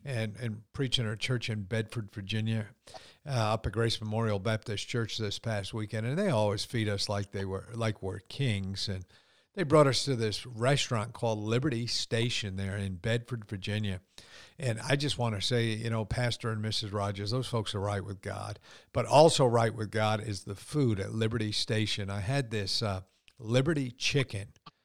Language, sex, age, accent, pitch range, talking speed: English, male, 50-69, American, 105-130 Hz, 190 wpm